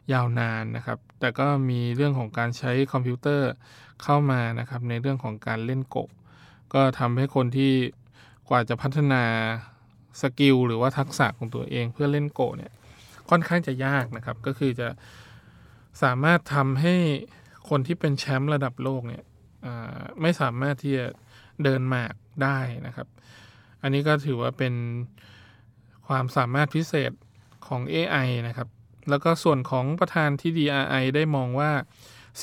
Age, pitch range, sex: 20-39, 120-140 Hz, male